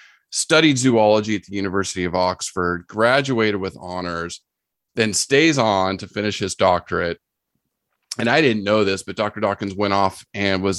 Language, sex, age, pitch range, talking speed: English, male, 30-49, 95-115 Hz, 160 wpm